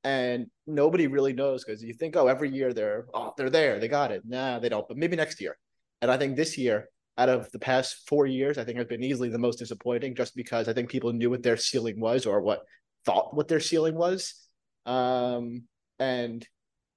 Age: 20-39